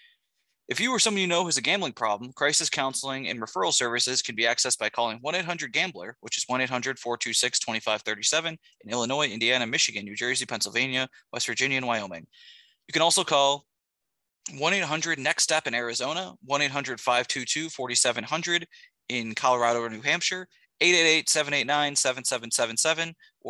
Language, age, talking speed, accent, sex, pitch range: English, 20-39, 125 wpm, American, male, 120-160 Hz